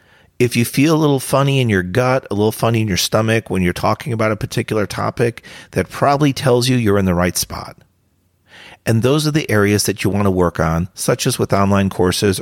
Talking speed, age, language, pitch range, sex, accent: 225 wpm, 40-59, English, 95-120 Hz, male, American